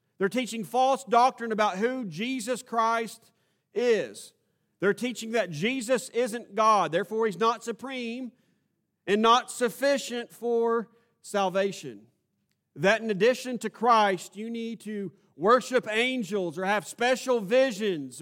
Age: 40-59